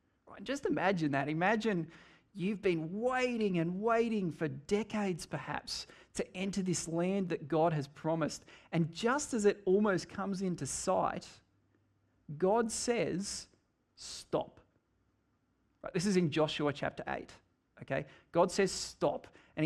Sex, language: male, English